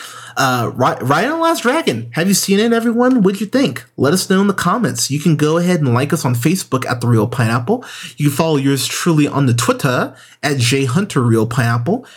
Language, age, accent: English, 30-49, American